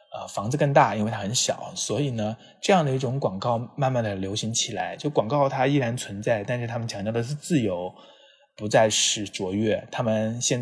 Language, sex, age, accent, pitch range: Chinese, male, 20-39, native, 95-125 Hz